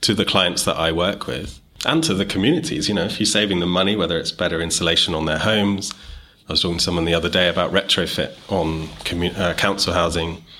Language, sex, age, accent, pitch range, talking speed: English, male, 30-49, British, 80-95 Hz, 220 wpm